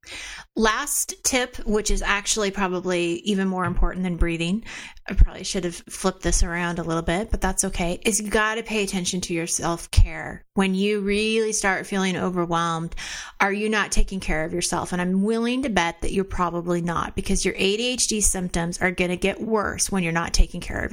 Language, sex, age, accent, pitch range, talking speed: English, female, 30-49, American, 175-200 Hz, 205 wpm